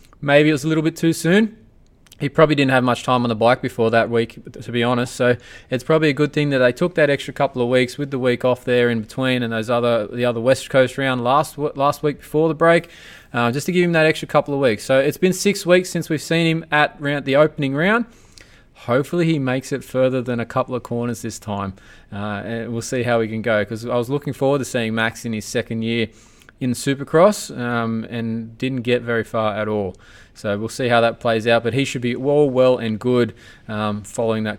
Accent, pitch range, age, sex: Australian, 115-150 Hz, 20-39, male